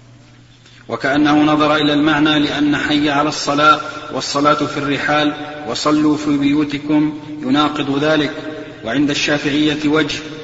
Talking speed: 110 wpm